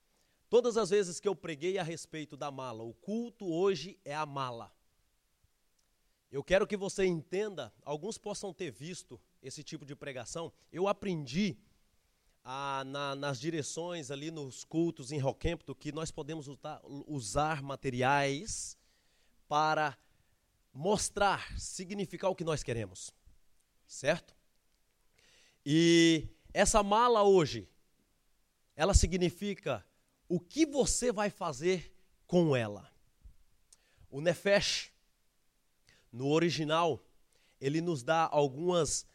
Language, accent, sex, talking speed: English, Brazilian, male, 110 wpm